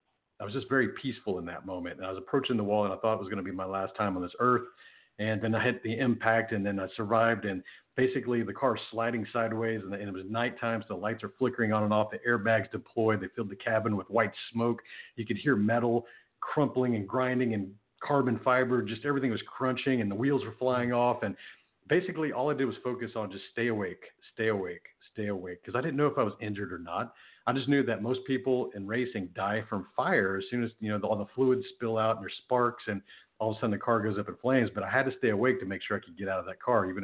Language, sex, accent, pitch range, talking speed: English, male, American, 105-125 Hz, 265 wpm